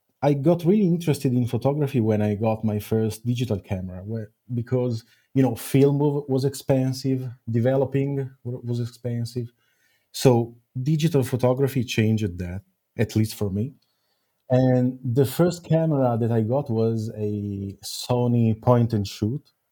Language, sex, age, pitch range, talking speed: English, male, 30-49, 110-135 Hz, 130 wpm